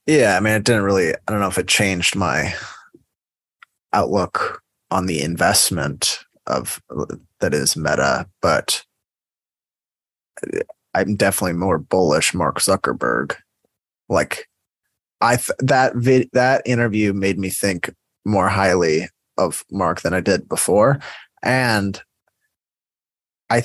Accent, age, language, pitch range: American, 20-39, English, 95-115 Hz